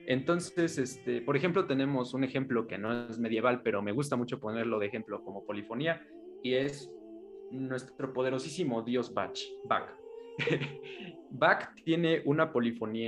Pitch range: 120-165 Hz